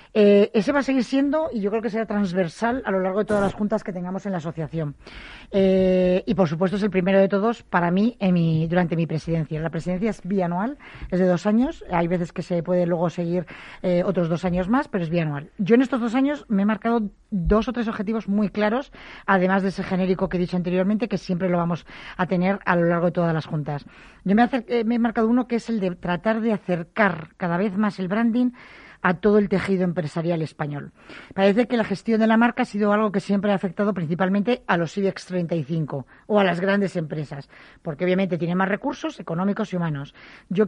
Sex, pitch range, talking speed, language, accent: female, 180-225 Hz, 225 wpm, Spanish, Spanish